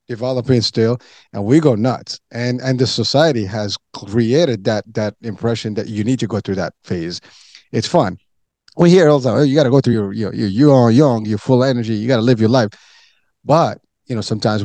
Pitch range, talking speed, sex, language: 105-130 Hz, 215 wpm, male, English